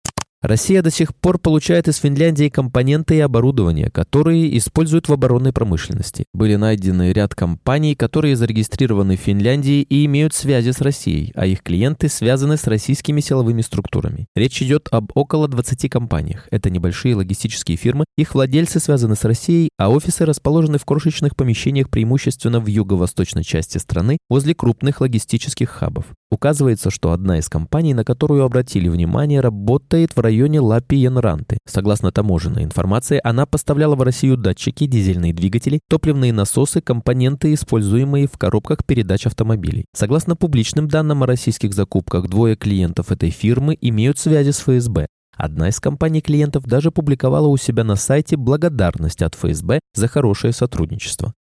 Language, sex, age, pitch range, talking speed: Russian, male, 20-39, 105-145 Hz, 150 wpm